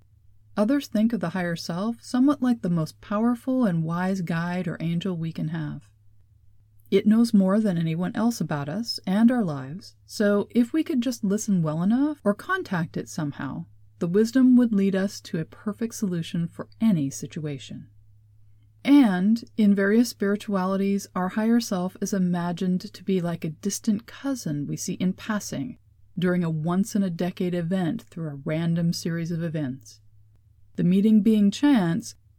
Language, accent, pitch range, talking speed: English, American, 155-215 Hz, 165 wpm